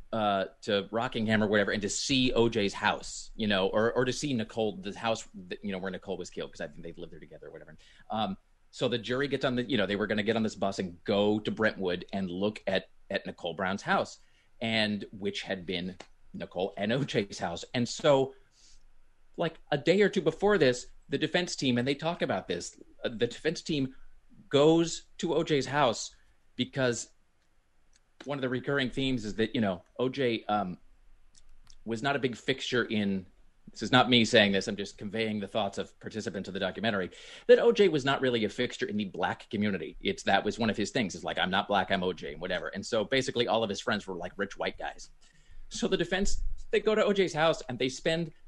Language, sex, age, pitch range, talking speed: English, male, 30-49, 100-150 Hz, 220 wpm